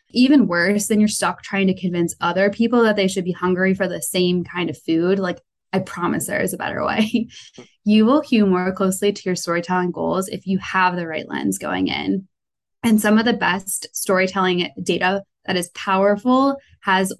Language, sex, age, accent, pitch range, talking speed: English, female, 20-39, American, 175-215 Hz, 200 wpm